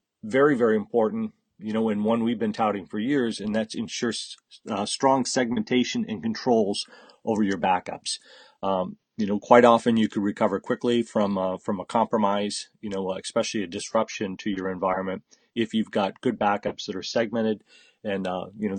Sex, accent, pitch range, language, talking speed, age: male, American, 100-120 Hz, English, 180 wpm, 40-59